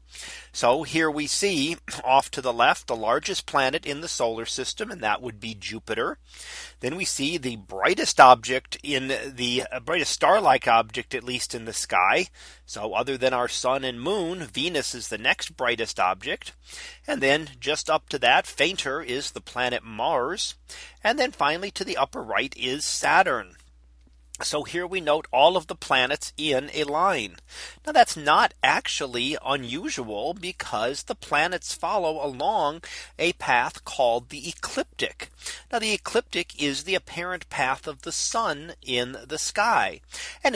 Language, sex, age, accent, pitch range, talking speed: English, male, 40-59, American, 120-165 Hz, 165 wpm